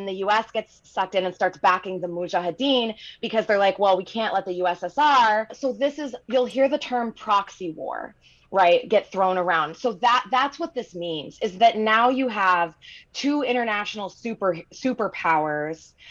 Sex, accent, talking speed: female, American, 175 wpm